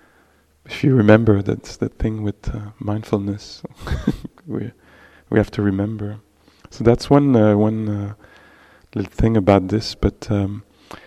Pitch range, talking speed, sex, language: 100-120 Hz, 140 wpm, male, English